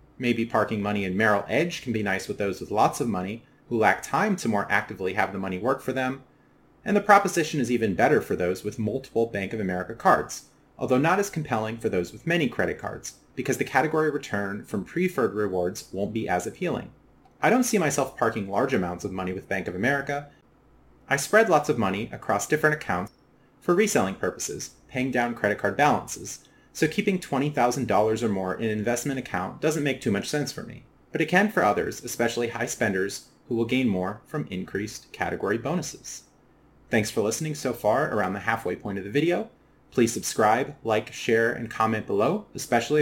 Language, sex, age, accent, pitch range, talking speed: English, male, 30-49, American, 105-150 Hz, 200 wpm